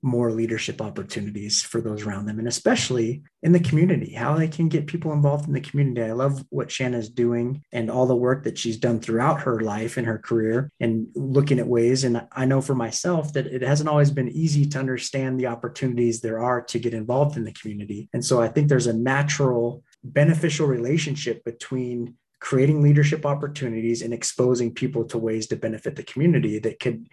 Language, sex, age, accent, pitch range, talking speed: English, male, 30-49, American, 115-145 Hz, 200 wpm